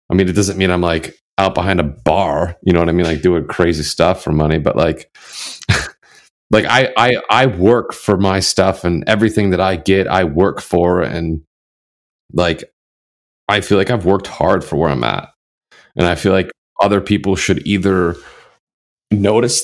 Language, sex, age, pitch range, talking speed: English, male, 30-49, 85-100 Hz, 185 wpm